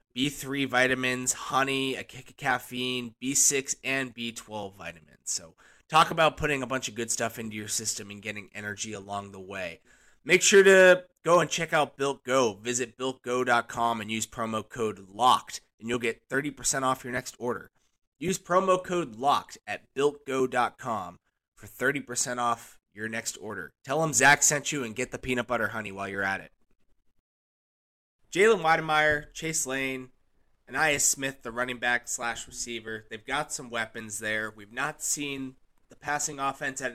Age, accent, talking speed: 20-39, American, 170 wpm